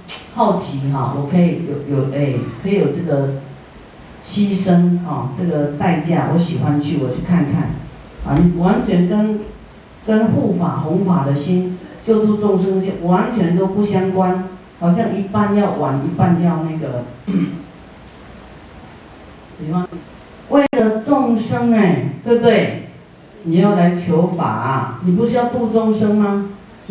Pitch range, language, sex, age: 160-205 Hz, Chinese, female, 40-59